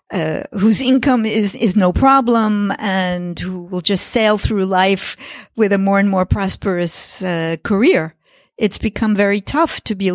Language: English